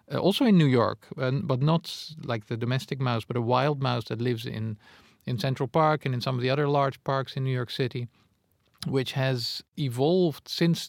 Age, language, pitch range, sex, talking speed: 50-69, English, 120-145 Hz, male, 205 wpm